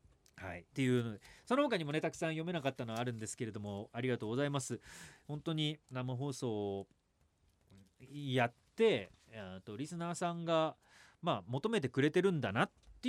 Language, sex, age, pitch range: Japanese, male, 40-59, 110-170 Hz